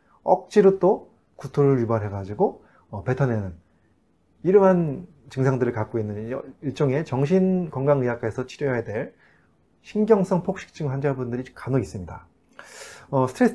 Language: Korean